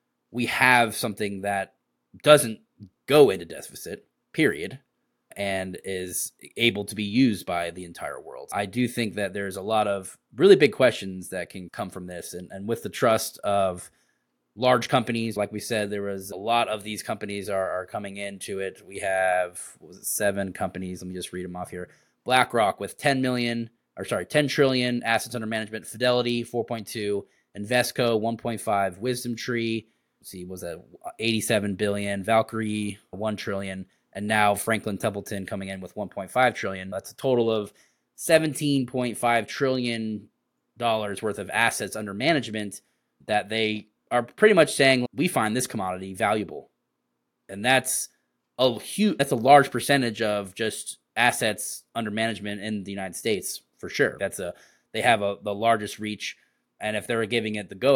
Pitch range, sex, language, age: 100-120 Hz, male, English, 20-39